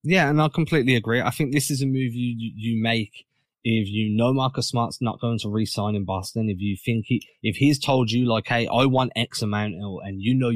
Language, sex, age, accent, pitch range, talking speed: English, male, 20-39, British, 110-130 Hz, 250 wpm